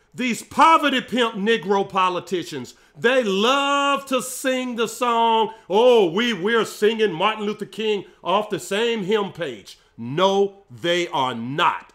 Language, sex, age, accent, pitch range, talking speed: English, male, 40-59, American, 185-225 Hz, 135 wpm